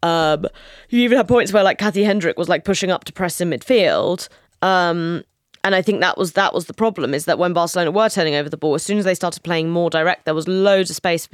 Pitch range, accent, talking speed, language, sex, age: 160-190 Hz, British, 265 wpm, English, female, 20-39